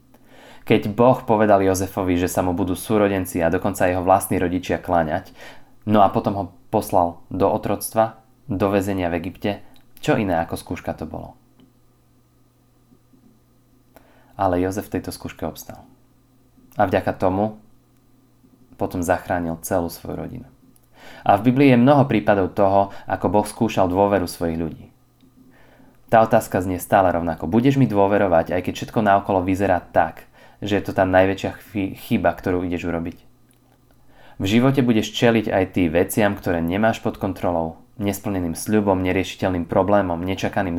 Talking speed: 145 wpm